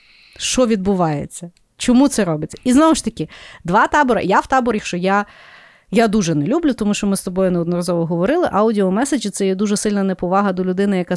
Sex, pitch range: female, 175-225 Hz